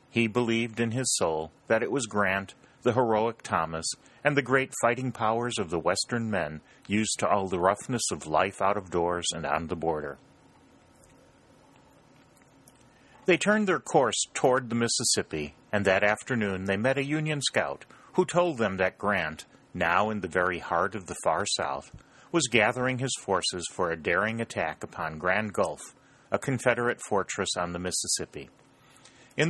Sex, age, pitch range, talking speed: male, 40-59, 95-130 Hz, 165 wpm